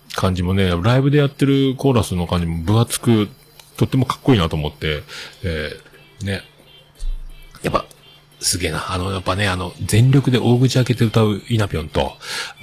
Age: 40-59